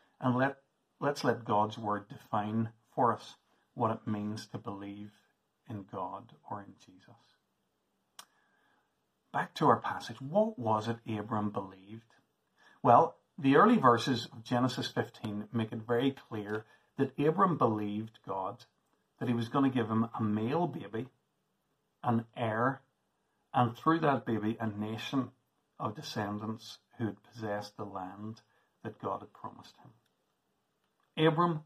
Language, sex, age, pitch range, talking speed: English, male, 50-69, 110-135 Hz, 140 wpm